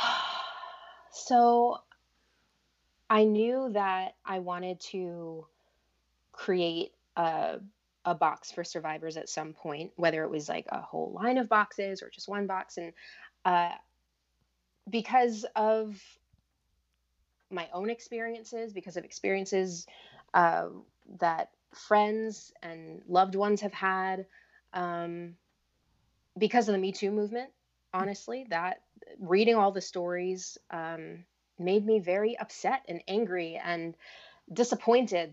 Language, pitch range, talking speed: English, 160-210 Hz, 115 wpm